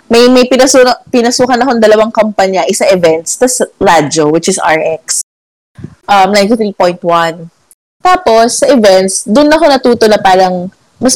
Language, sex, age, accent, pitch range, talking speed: Filipino, female, 20-39, native, 180-245 Hz, 145 wpm